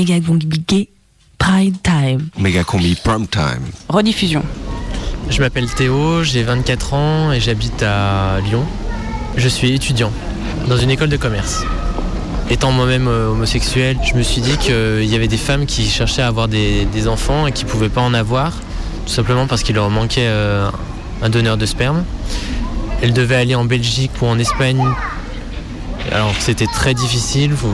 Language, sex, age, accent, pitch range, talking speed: French, male, 20-39, French, 105-130 Hz, 160 wpm